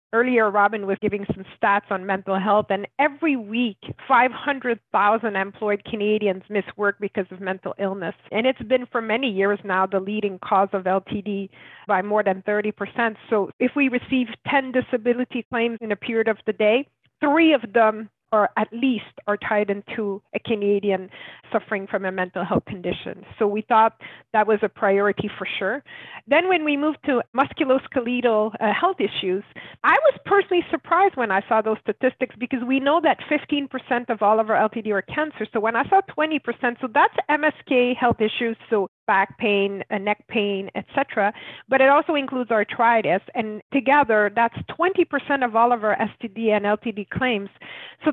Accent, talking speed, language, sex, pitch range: American, 175 wpm, English, female, 210-275 Hz